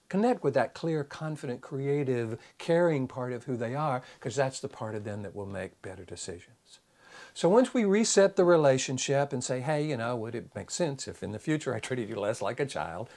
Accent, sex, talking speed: American, male, 225 wpm